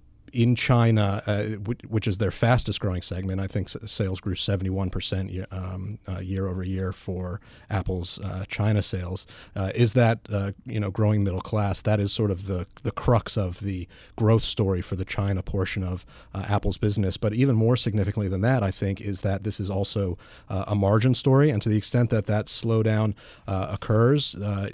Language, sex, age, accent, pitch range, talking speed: English, male, 30-49, American, 95-110 Hz, 195 wpm